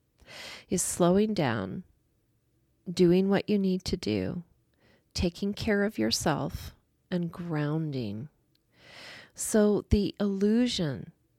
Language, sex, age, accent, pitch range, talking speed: English, female, 40-59, American, 150-185 Hz, 95 wpm